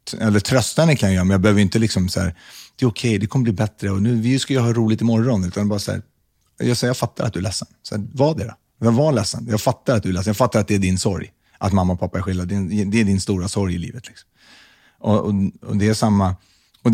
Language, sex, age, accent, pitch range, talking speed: Swedish, male, 30-49, native, 95-115 Hz, 300 wpm